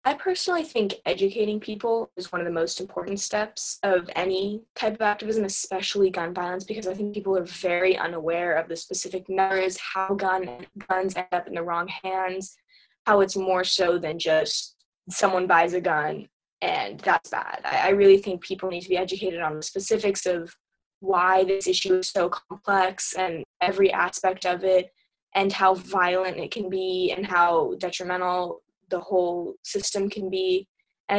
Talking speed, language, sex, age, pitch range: 175 wpm, English, female, 10-29, 180-205 Hz